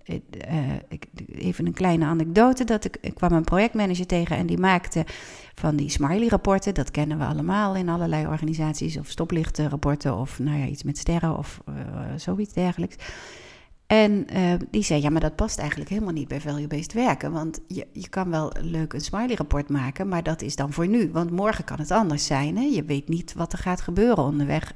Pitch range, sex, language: 160-235 Hz, female, Dutch